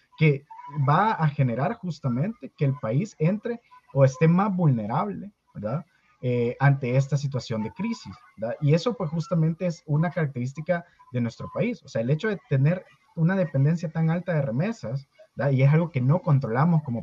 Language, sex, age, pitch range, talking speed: Spanish, male, 30-49, 130-175 Hz, 180 wpm